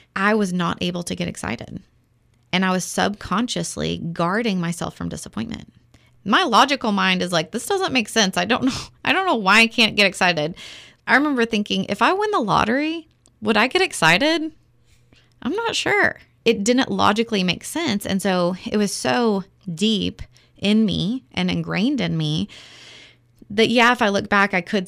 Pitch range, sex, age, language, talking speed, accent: 155-210 Hz, female, 20-39, English, 180 wpm, American